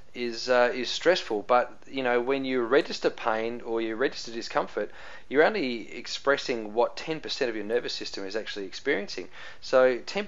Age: 30-49